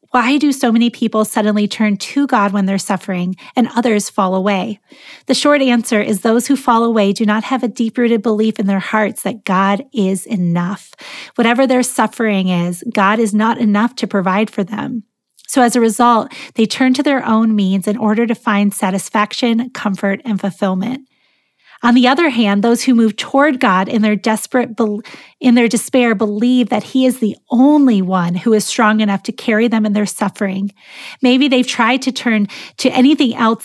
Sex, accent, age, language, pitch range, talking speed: female, American, 30-49, English, 200-245 Hz, 195 wpm